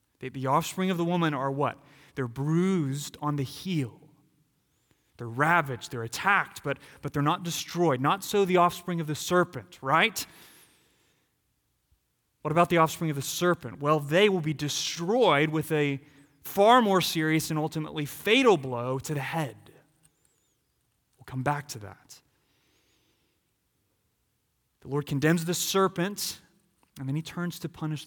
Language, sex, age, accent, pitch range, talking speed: English, male, 30-49, American, 130-165 Hz, 145 wpm